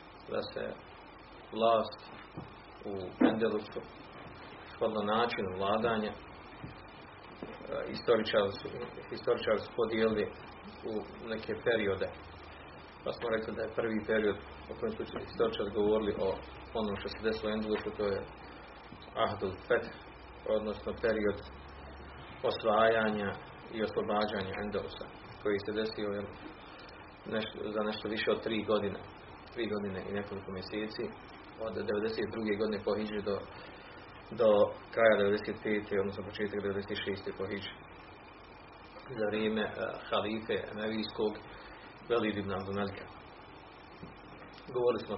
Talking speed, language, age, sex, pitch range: 110 wpm, Croatian, 30-49, male, 100-110 Hz